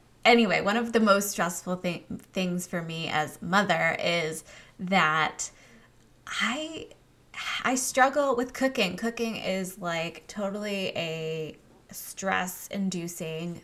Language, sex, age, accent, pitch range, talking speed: English, female, 20-39, American, 175-215 Hz, 110 wpm